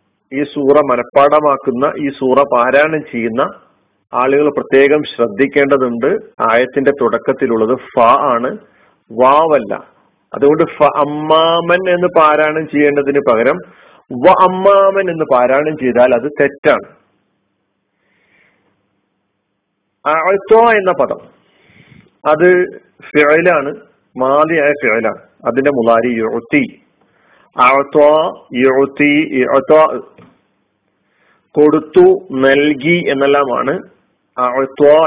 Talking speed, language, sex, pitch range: 75 wpm, Malayalam, male, 135-170 Hz